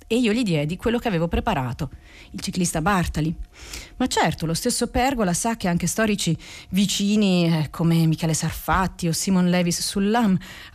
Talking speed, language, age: 160 wpm, Italian, 40-59